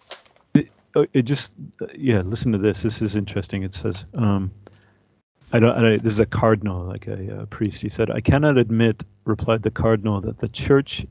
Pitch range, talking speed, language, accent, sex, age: 105-120 Hz, 190 wpm, English, American, male, 40-59